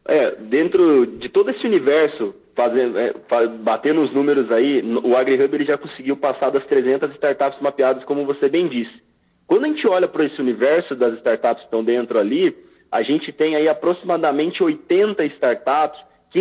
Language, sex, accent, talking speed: Portuguese, male, Brazilian, 160 wpm